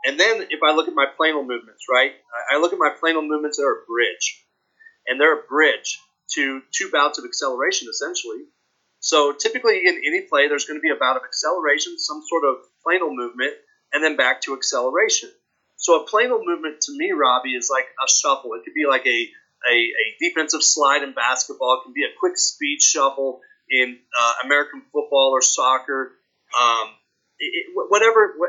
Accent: American